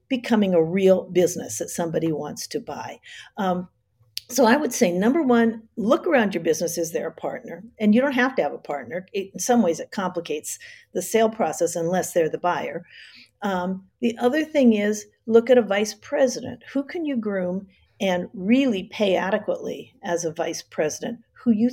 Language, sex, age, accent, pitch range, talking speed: English, female, 50-69, American, 170-255 Hz, 190 wpm